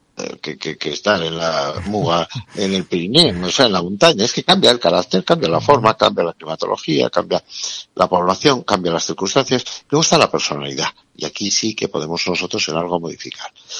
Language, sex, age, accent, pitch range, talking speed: Spanish, male, 60-79, Spanish, 85-110 Hz, 200 wpm